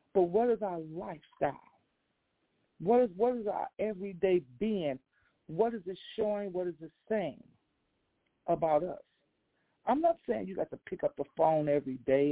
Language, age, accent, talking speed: English, 50-69, American, 165 wpm